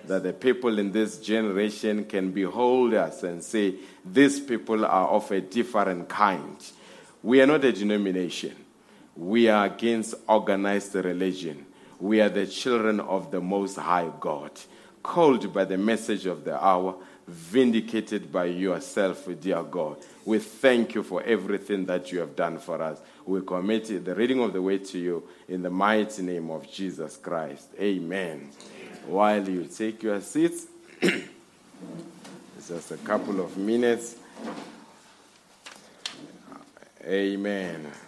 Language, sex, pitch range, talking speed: English, male, 90-110 Hz, 140 wpm